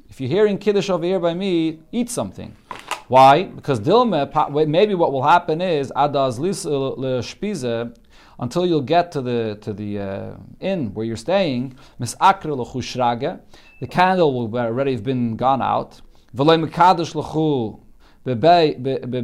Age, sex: 40-59, male